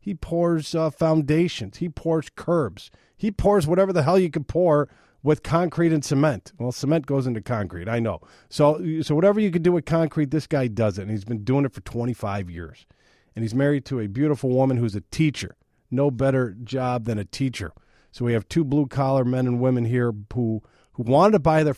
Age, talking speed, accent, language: 40-59, 210 wpm, American, English